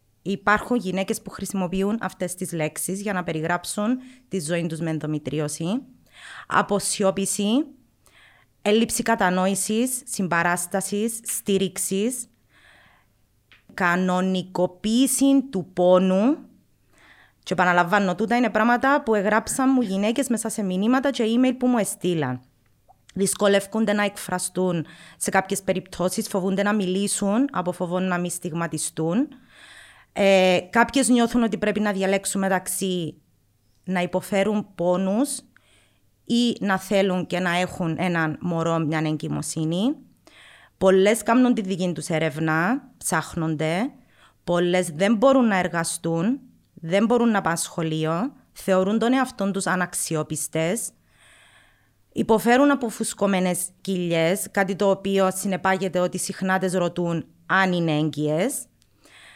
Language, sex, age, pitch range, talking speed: Greek, female, 20-39, 175-220 Hz, 110 wpm